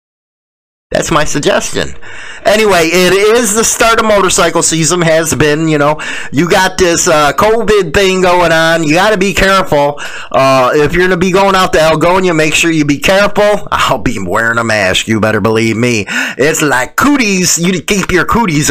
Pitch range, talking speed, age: 120-165 Hz, 185 wpm, 30-49